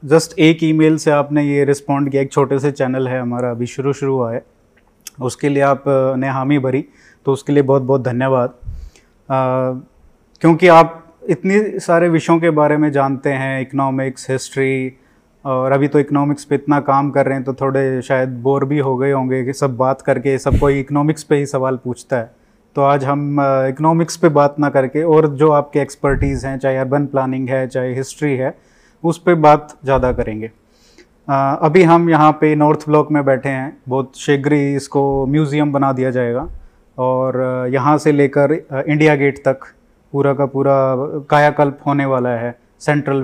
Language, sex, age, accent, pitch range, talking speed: Hindi, male, 20-39, native, 135-155 Hz, 180 wpm